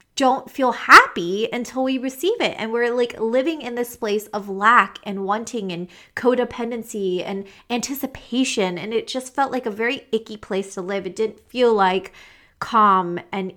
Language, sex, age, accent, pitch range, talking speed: English, female, 30-49, American, 190-240 Hz, 175 wpm